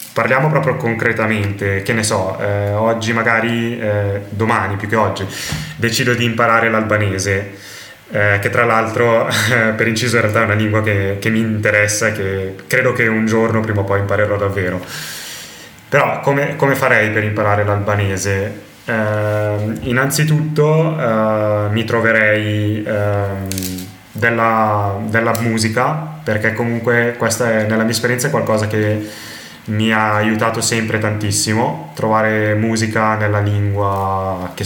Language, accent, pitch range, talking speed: Italian, native, 105-120 Hz, 140 wpm